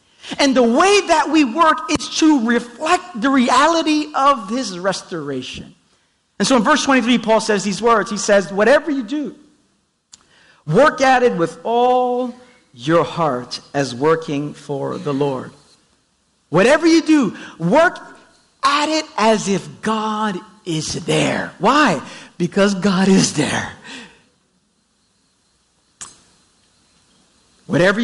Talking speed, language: 120 wpm, English